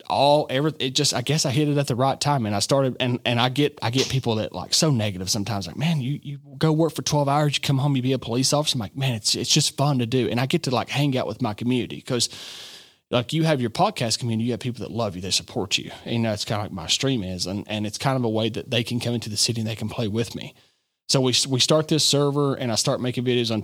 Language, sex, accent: English, male, American